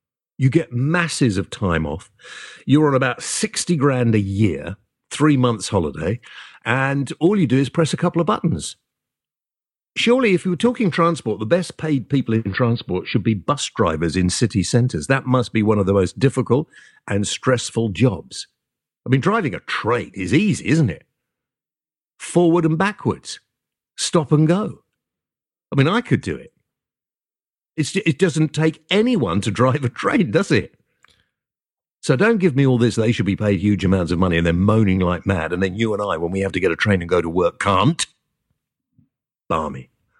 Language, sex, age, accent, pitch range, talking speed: English, male, 50-69, British, 100-150 Hz, 185 wpm